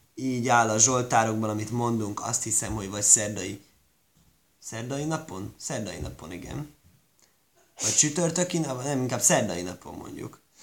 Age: 20-39